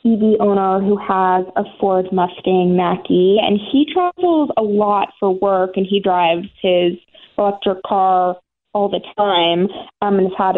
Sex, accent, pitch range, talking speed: female, American, 180-210 Hz, 160 wpm